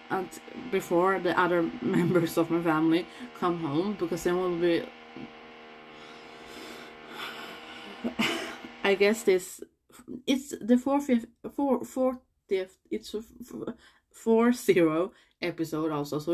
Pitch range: 160-220 Hz